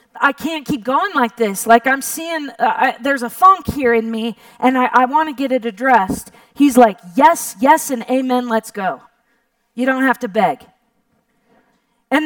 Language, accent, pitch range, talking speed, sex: English, American, 235-295 Hz, 190 wpm, female